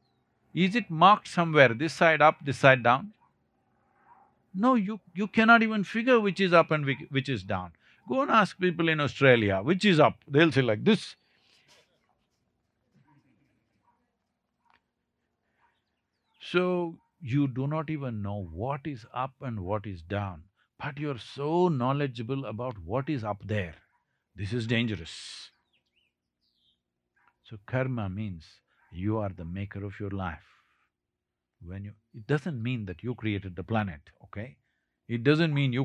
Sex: male